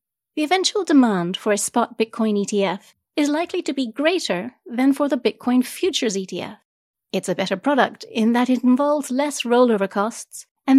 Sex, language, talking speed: female, English, 170 wpm